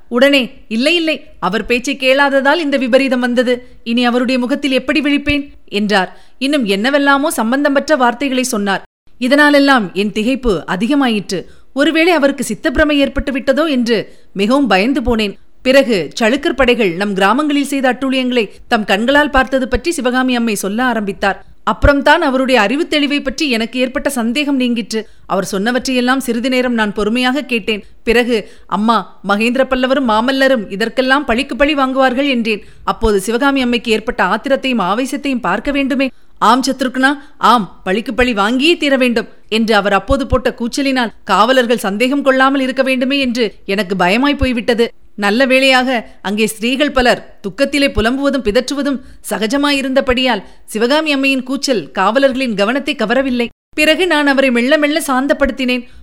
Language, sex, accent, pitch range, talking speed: Tamil, female, native, 225-275 Hz, 135 wpm